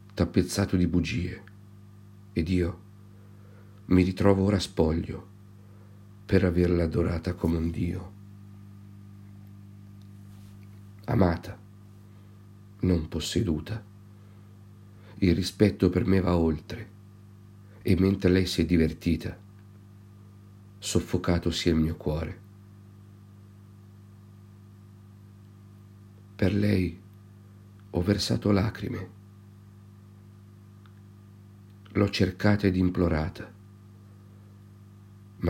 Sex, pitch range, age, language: male, 95-100 Hz, 50-69, Italian